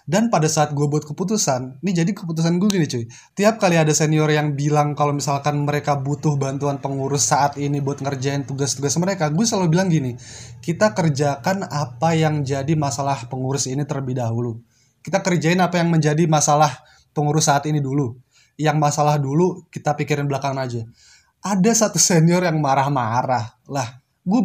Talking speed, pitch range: 165 wpm, 140-175 Hz